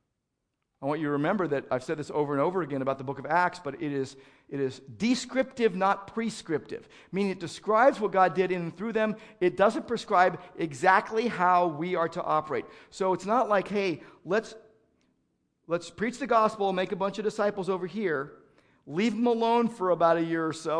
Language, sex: English, male